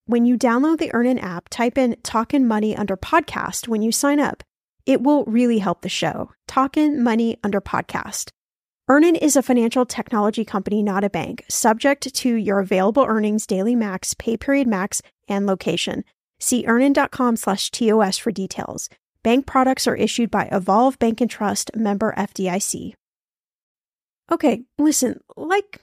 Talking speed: 155 wpm